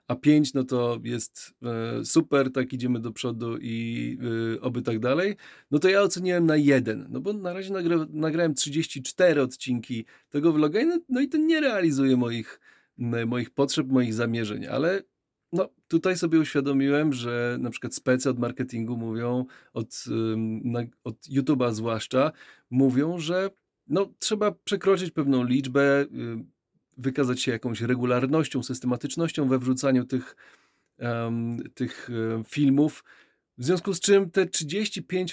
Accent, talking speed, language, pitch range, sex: native, 150 wpm, Polish, 125-165 Hz, male